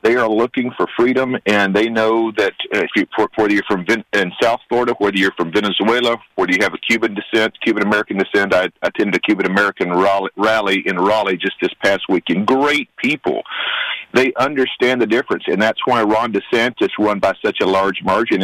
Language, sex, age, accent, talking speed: English, male, 50-69, American, 190 wpm